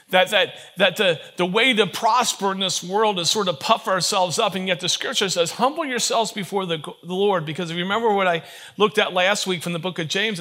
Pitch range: 165-210 Hz